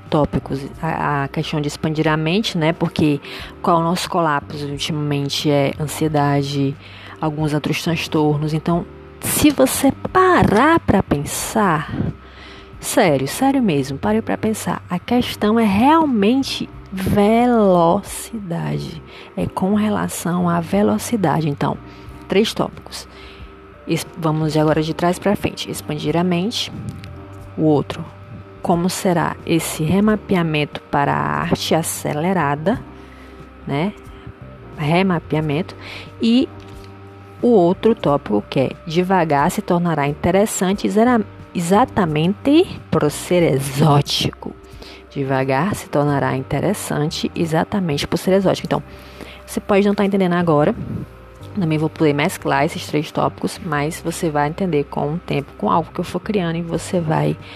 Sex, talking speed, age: female, 125 wpm, 20-39